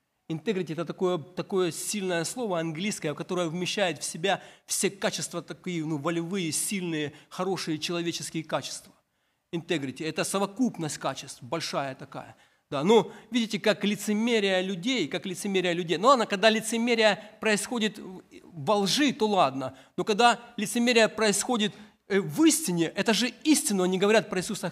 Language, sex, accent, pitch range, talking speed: Ukrainian, male, native, 180-235 Hz, 140 wpm